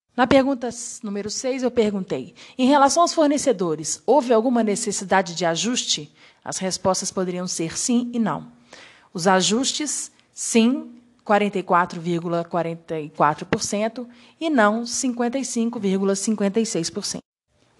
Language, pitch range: Portuguese, 185-240 Hz